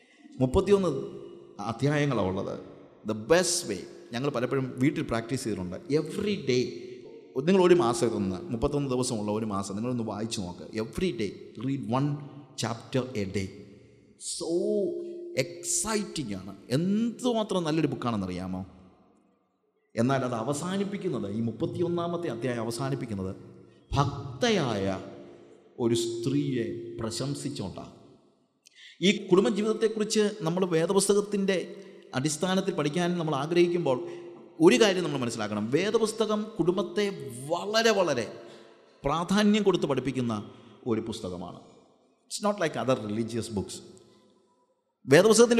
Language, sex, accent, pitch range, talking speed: English, male, Indian, 120-185 Hz, 40 wpm